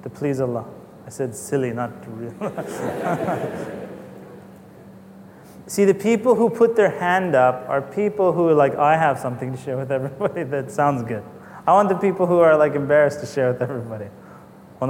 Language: English